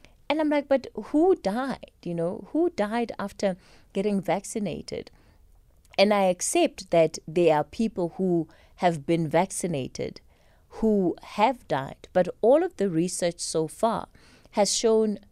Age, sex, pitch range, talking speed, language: 30-49, female, 165-215 Hz, 140 wpm, English